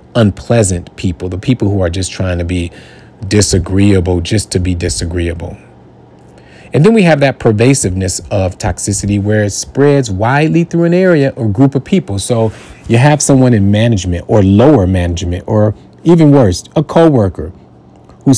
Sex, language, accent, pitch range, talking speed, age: male, English, American, 90-120 Hz, 160 wpm, 40-59